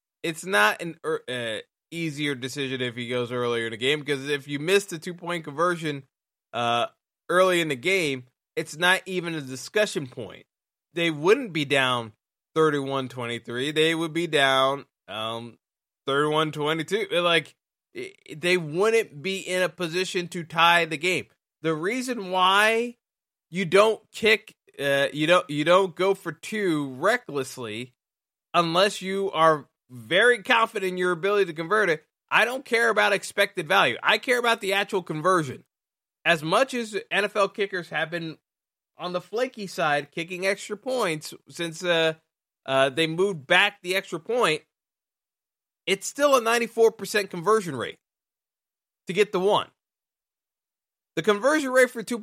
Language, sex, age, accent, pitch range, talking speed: English, male, 20-39, American, 150-210 Hz, 155 wpm